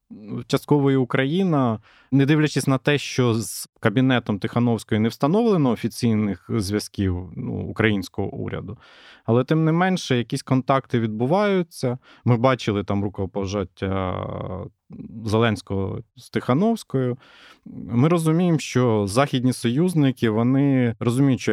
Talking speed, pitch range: 110 wpm, 105-135 Hz